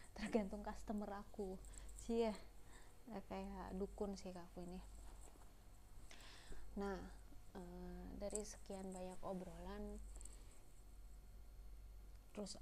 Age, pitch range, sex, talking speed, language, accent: 20-39, 150-205 Hz, female, 85 wpm, Indonesian, native